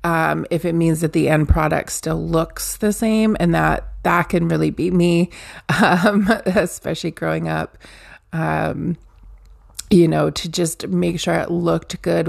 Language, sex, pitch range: English, female, 160-185 Hz